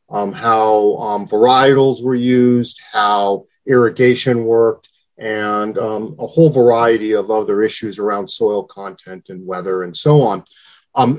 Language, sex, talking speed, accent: English, male, 140 wpm, American